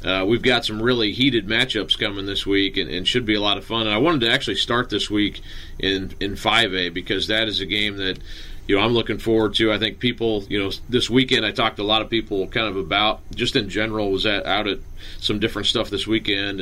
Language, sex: English, male